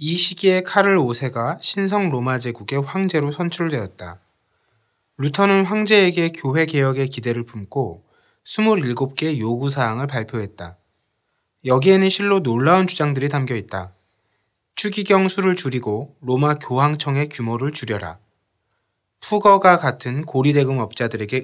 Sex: male